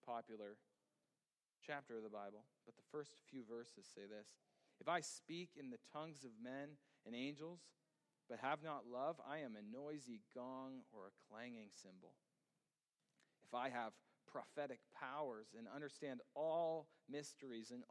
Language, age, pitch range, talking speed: English, 40-59, 120-155 Hz, 150 wpm